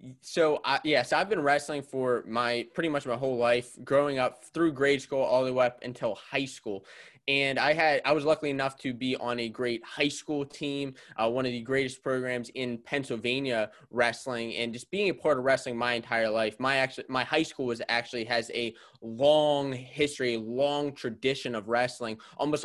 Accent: American